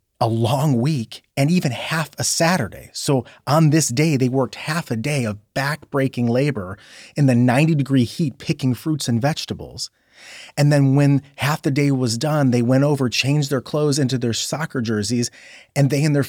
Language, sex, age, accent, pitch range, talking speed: English, male, 30-49, American, 115-145 Hz, 185 wpm